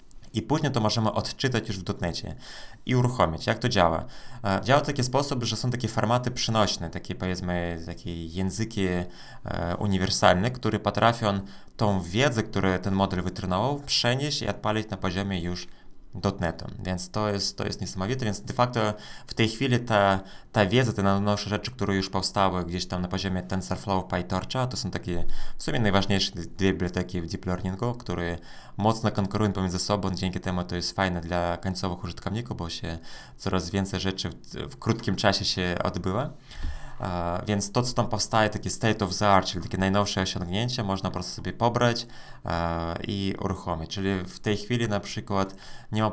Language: Polish